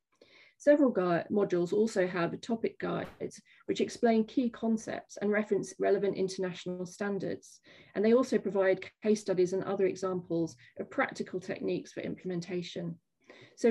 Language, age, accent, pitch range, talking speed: English, 30-49, British, 180-215 Hz, 140 wpm